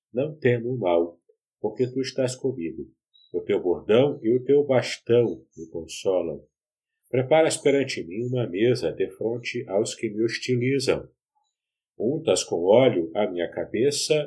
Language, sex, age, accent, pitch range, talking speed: Portuguese, male, 50-69, Brazilian, 110-175 Hz, 145 wpm